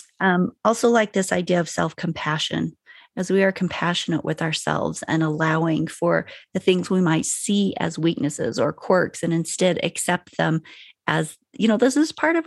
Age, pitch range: 40-59, 175-235 Hz